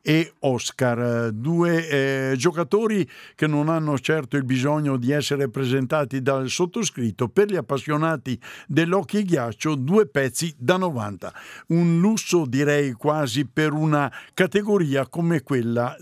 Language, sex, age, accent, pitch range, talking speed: Italian, male, 60-79, native, 130-170 Hz, 125 wpm